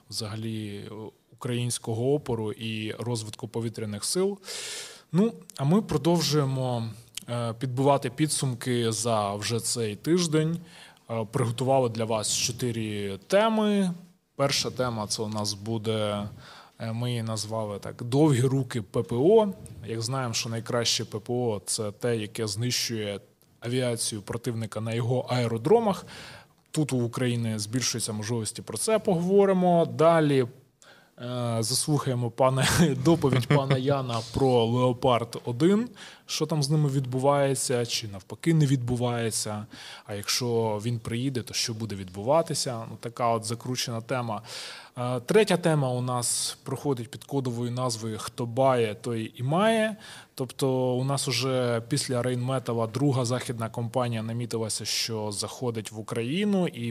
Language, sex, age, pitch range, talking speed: Ukrainian, male, 20-39, 115-140 Hz, 120 wpm